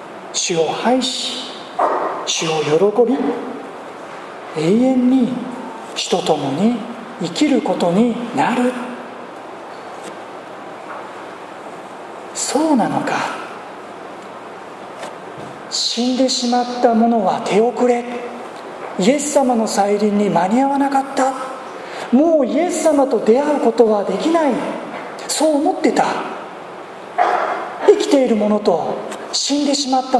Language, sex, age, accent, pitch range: Japanese, male, 40-59, native, 220-285 Hz